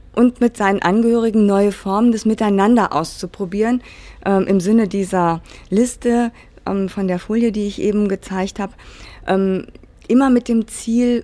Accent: German